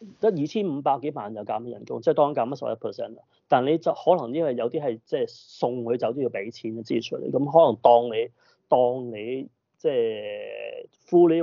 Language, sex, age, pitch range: Chinese, male, 30-49, 120-190 Hz